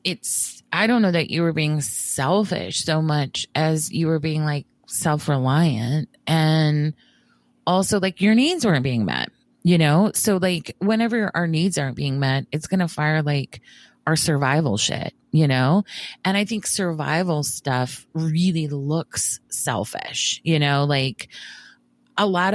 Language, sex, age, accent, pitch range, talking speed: English, female, 30-49, American, 145-190 Hz, 155 wpm